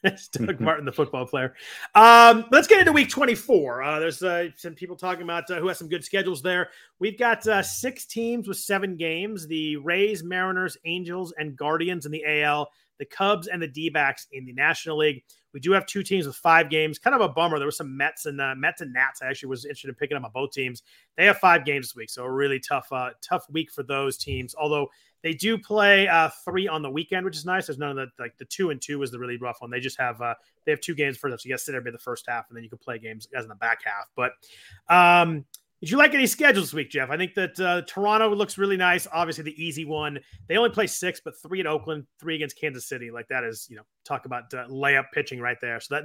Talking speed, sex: 270 wpm, male